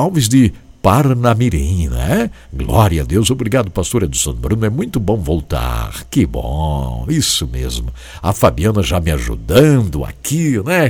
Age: 60-79